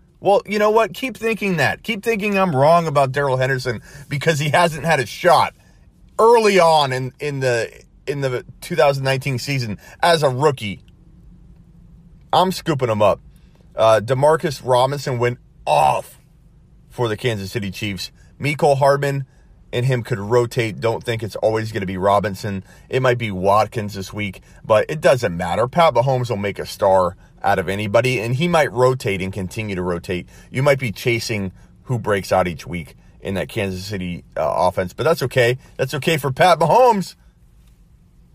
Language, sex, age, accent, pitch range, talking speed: English, male, 30-49, American, 105-155 Hz, 170 wpm